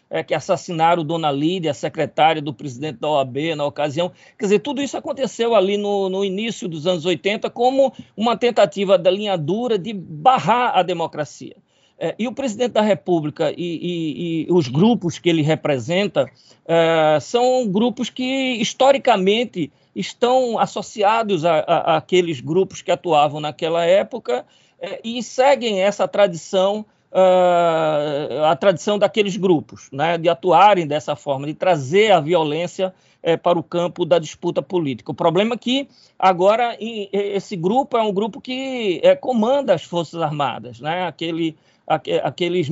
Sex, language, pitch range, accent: male, Portuguese, 165-210 Hz, Brazilian